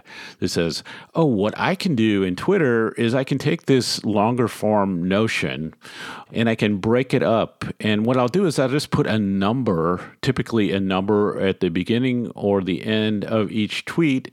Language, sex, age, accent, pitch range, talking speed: English, male, 50-69, American, 90-110 Hz, 190 wpm